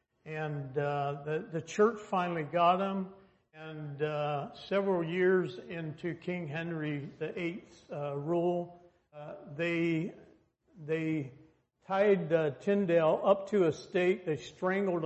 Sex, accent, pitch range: male, American, 150-185 Hz